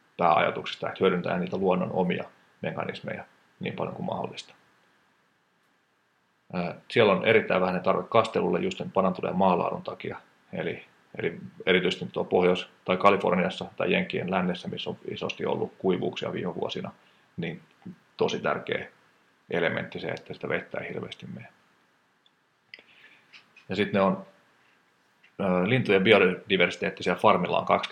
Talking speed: 120 wpm